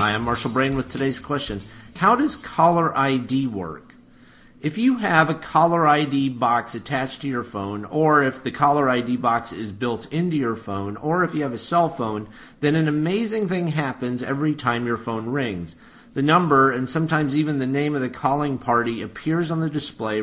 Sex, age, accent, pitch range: male, 40-59, American, 120-155 Hz